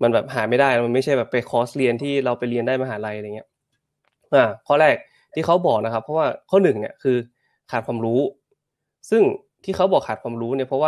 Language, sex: Thai, male